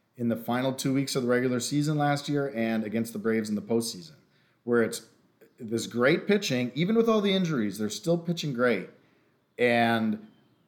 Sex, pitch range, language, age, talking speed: male, 110-145 Hz, English, 40-59, 185 wpm